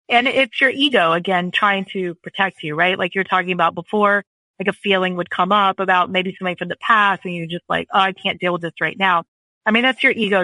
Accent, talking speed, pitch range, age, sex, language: American, 255 wpm, 180-210 Hz, 30-49, female, English